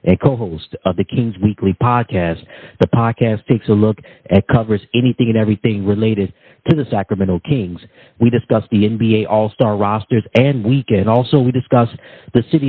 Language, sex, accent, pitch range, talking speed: English, male, American, 105-130 Hz, 165 wpm